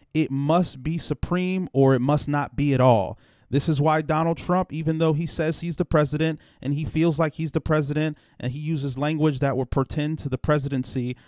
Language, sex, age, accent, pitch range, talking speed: English, male, 30-49, American, 130-170 Hz, 215 wpm